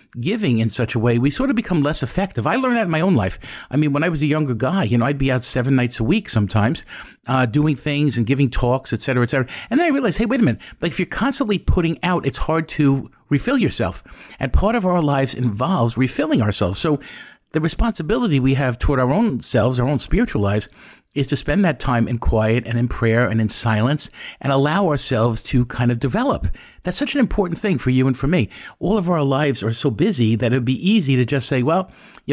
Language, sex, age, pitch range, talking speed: English, male, 50-69, 125-175 Hz, 245 wpm